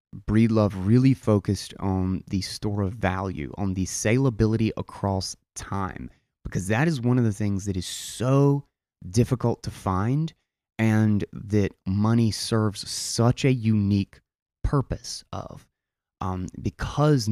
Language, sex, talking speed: English, male, 130 wpm